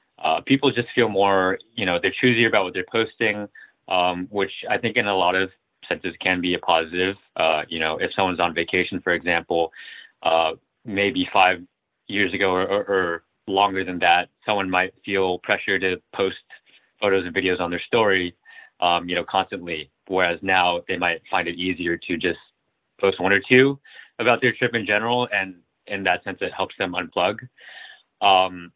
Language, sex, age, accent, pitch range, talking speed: English, male, 20-39, American, 90-110 Hz, 185 wpm